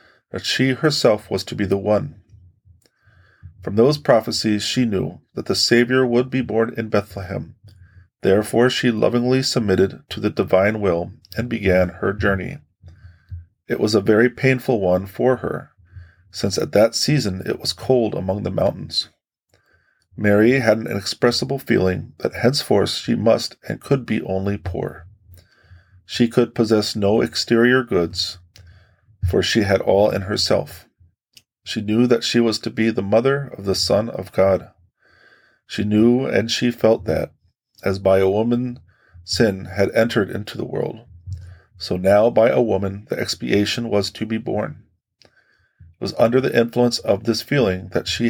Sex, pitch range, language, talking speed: male, 95-120 Hz, English, 160 wpm